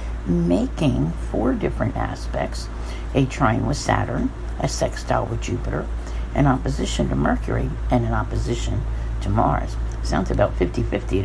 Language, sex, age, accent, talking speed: English, female, 60-79, American, 130 wpm